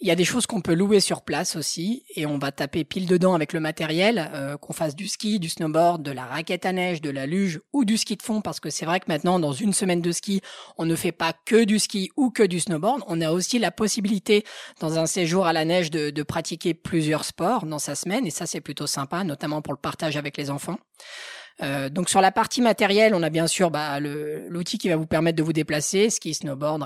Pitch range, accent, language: 155-190 Hz, French, French